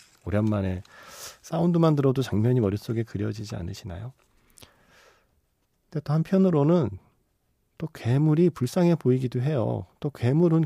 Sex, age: male, 40-59